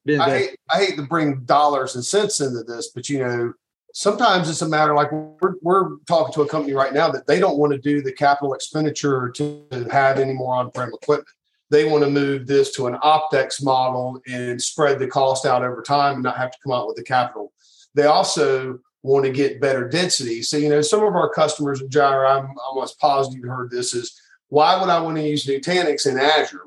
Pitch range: 135-165 Hz